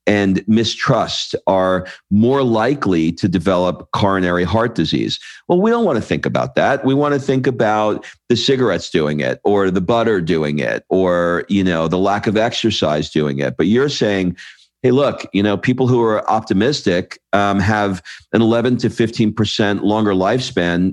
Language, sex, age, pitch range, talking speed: English, male, 50-69, 90-115 Hz, 175 wpm